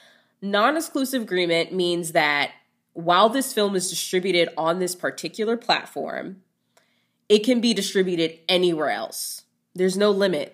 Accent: American